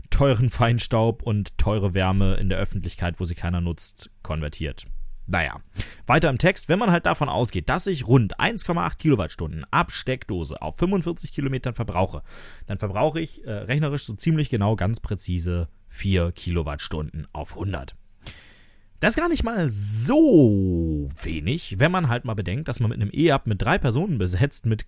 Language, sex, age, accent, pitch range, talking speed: German, male, 30-49, German, 100-140 Hz, 165 wpm